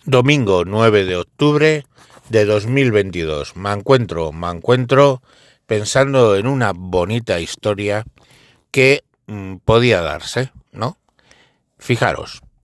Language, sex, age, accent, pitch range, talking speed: Spanish, male, 60-79, Spanish, 95-130 Hz, 95 wpm